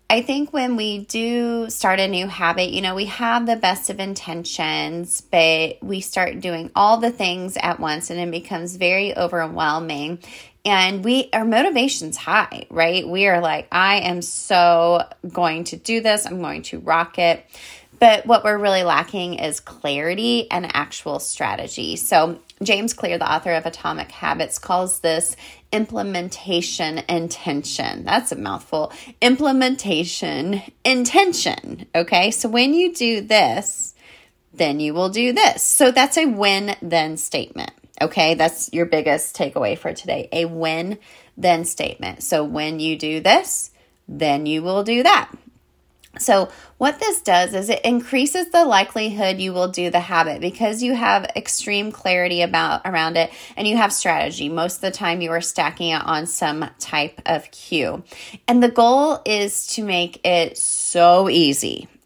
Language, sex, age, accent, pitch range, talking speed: English, female, 20-39, American, 165-220 Hz, 160 wpm